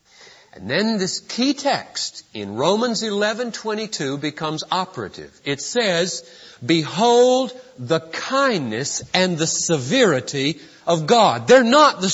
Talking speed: 125 wpm